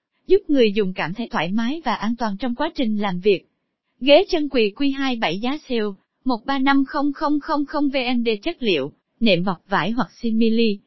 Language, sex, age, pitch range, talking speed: Vietnamese, female, 20-39, 210-285 Hz, 165 wpm